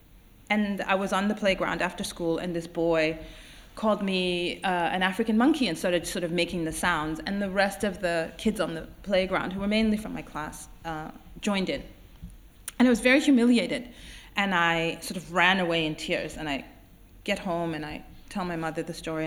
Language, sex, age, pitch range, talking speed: English, female, 30-49, 175-255 Hz, 205 wpm